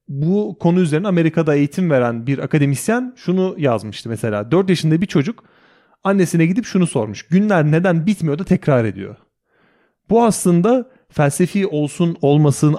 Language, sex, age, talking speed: Turkish, male, 30-49, 140 wpm